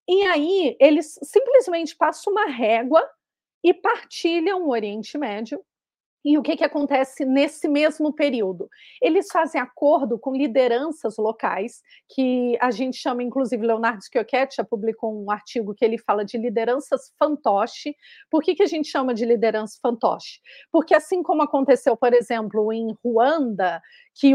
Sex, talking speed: female, 150 wpm